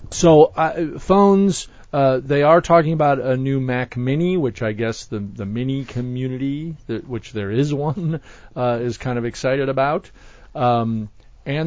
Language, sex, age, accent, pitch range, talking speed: English, male, 40-59, American, 110-140 Hz, 165 wpm